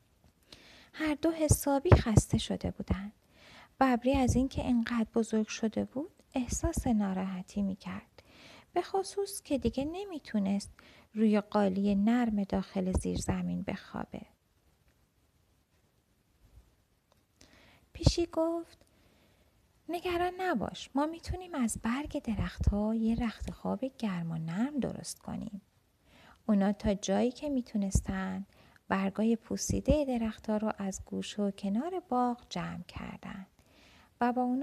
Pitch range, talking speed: 195-265 Hz, 115 wpm